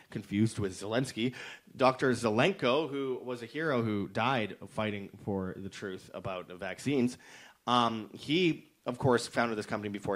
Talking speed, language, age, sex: 155 wpm, English, 30-49, male